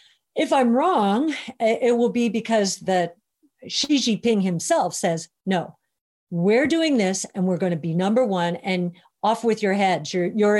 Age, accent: 50-69, American